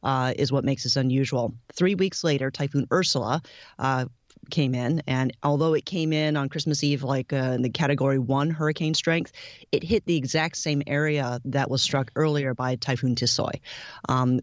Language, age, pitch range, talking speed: English, 30-49, 130-155 Hz, 185 wpm